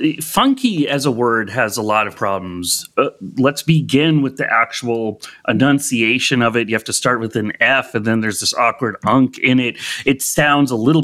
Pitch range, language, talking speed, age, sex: 120-170 Hz, English, 200 wpm, 30-49, male